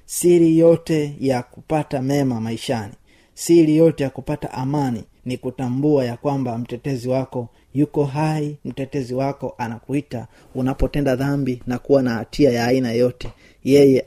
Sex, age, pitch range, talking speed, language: male, 30-49, 115-140 Hz, 135 wpm, Swahili